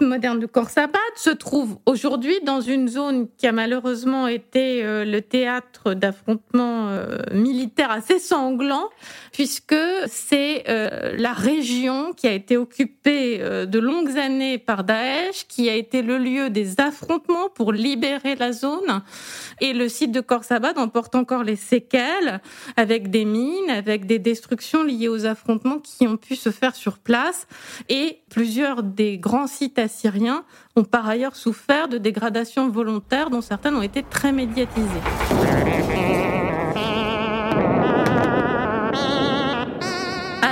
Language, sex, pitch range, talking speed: French, female, 230-280 Hz, 130 wpm